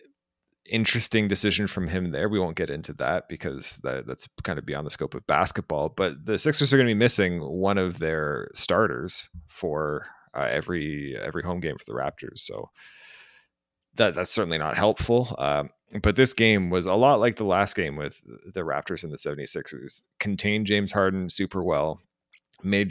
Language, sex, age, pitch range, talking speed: English, male, 30-49, 90-110 Hz, 185 wpm